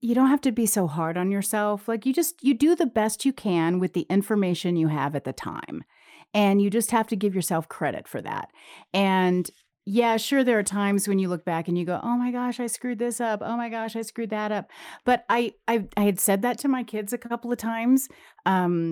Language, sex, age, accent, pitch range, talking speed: English, female, 40-59, American, 170-230 Hz, 245 wpm